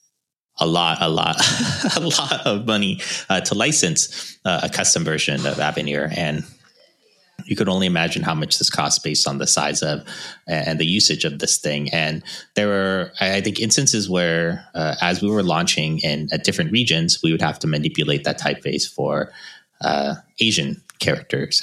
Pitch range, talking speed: 80-105 Hz, 180 wpm